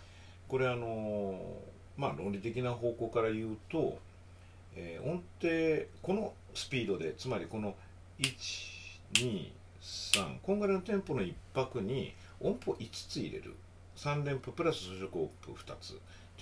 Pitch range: 90-120 Hz